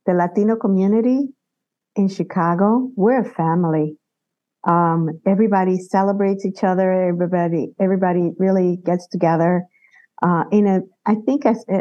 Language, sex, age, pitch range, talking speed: English, female, 50-69, 165-195 Hz, 115 wpm